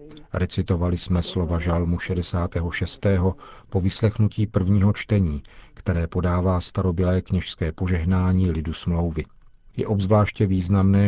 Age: 50-69